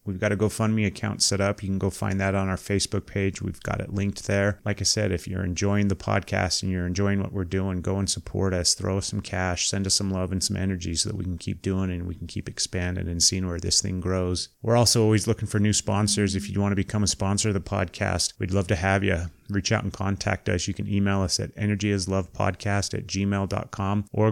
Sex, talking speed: male, 255 wpm